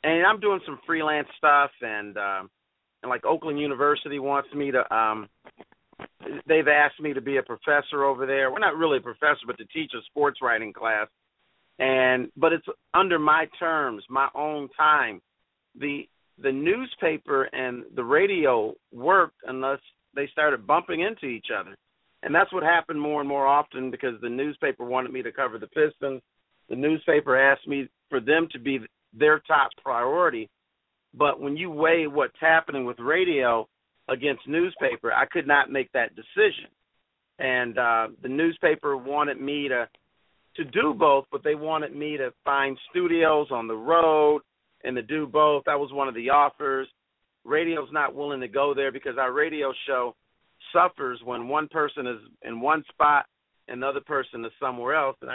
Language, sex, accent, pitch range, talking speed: English, male, American, 130-155 Hz, 175 wpm